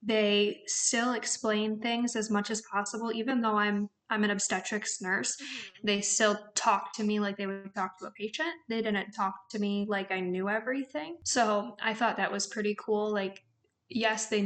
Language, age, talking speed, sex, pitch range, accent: English, 10-29, 190 wpm, female, 205-225 Hz, American